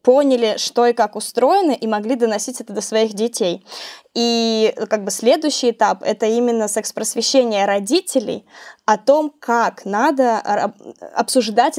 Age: 20-39